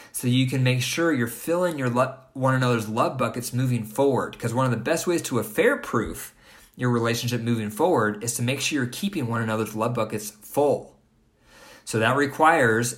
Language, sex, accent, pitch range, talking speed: English, male, American, 115-135 Hz, 185 wpm